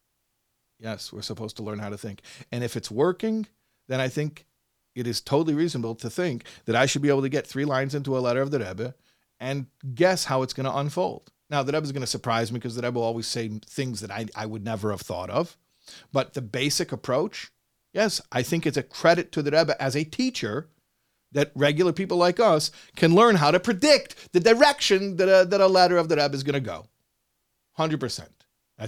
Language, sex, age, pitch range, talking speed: English, male, 40-59, 105-145 Hz, 220 wpm